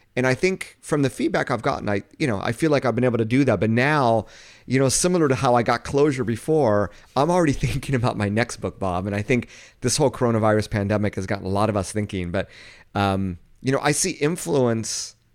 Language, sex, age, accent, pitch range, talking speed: English, male, 30-49, American, 100-130 Hz, 235 wpm